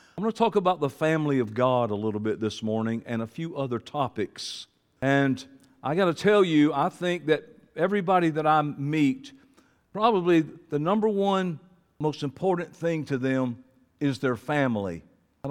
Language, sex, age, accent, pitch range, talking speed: English, male, 50-69, American, 140-185 Hz, 175 wpm